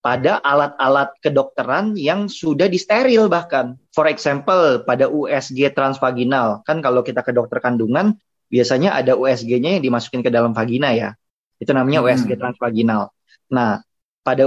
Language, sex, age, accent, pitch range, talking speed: Indonesian, male, 20-39, native, 130-180 Hz, 135 wpm